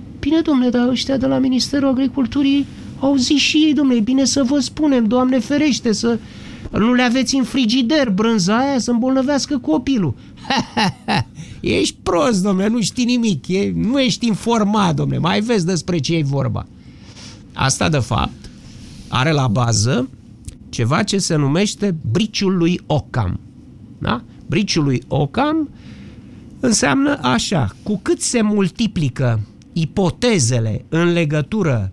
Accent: native